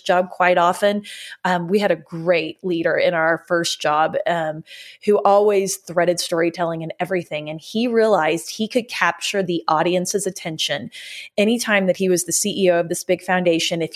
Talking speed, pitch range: 170 wpm, 170-210 Hz